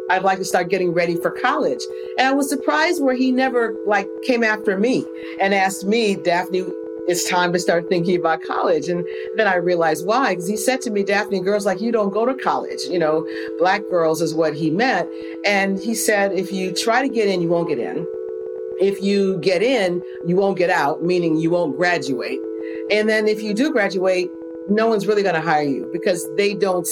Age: 40-59